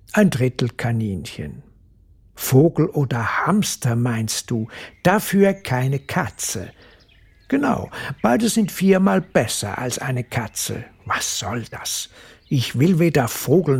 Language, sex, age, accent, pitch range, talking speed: German, male, 60-79, German, 120-180 Hz, 115 wpm